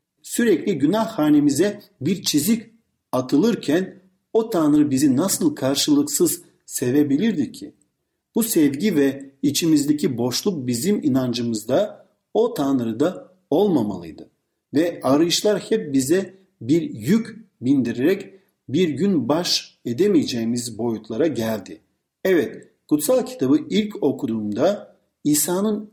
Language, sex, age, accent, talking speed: Turkish, male, 50-69, native, 100 wpm